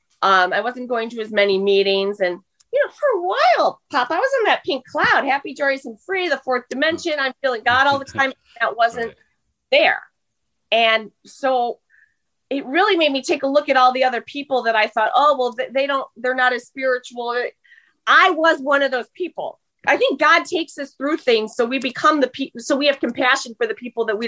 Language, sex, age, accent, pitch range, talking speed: English, female, 30-49, American, 200-265 Hz, 220 wpm